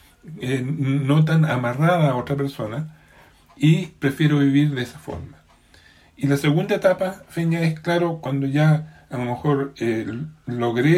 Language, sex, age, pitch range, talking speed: Spanish, male, 40-59, 120-150 Hz, 140 wpm